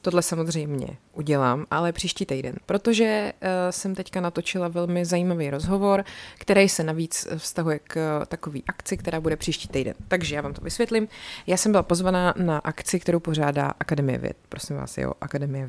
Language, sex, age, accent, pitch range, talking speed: Czech, female, 30-49, native, 155-190 Hz, 170 wpm